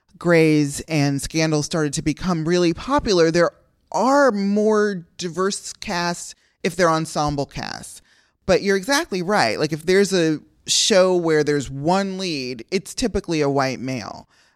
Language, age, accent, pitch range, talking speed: English, 30-49, American, 150-190 Hz, 145 wpm